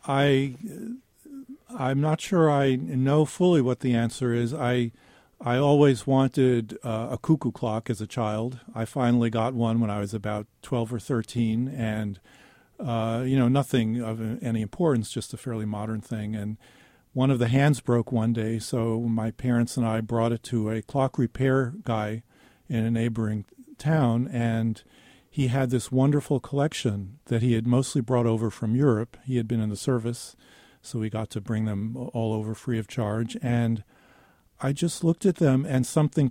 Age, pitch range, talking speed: 50-69, 115-135 Hz, 180 wpm